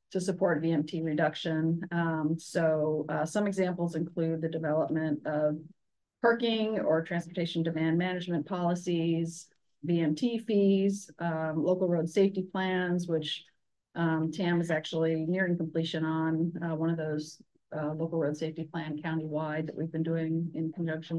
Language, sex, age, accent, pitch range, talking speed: English, female, 40-59, American, 155-185 Hz, 140 wpm